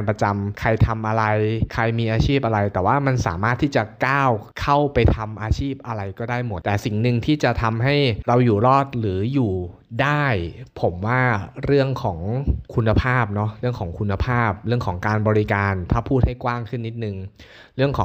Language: Thai